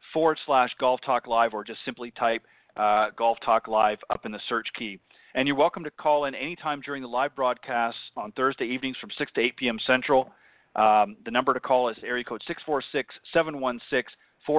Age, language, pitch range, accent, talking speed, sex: 40-59, English, 120-145 Hz, American, 200 wpm, male